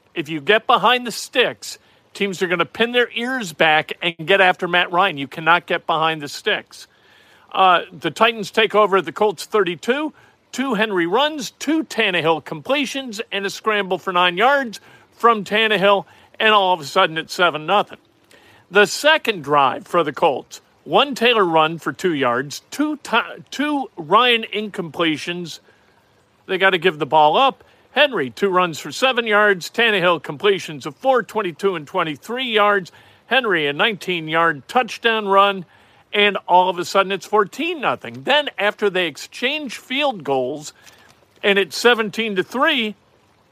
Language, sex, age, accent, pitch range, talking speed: English, male, 50-69, American, 175-230 Hz, 160 wpm